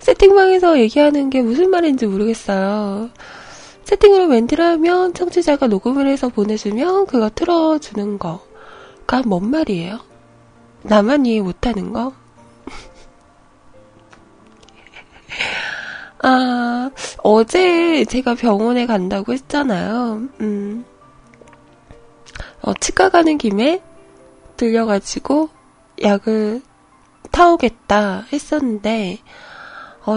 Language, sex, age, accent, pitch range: Korean, female, 20-39, native, 215-310 Hz